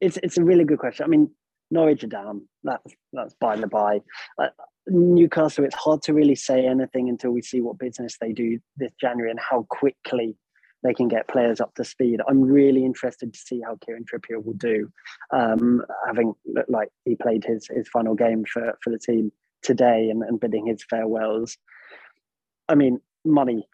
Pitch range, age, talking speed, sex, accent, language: 115-135 Hz, 20-39, 190 wpm, male, British, English